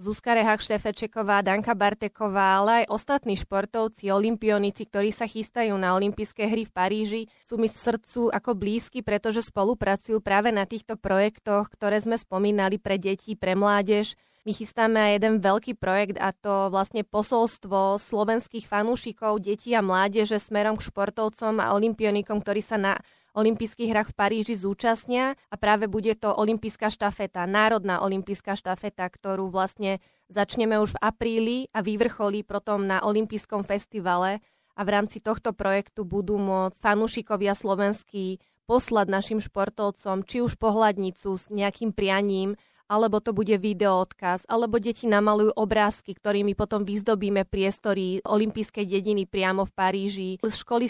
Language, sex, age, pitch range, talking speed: Slovak, female, 20-39, 195-220 Hz, 145 wpm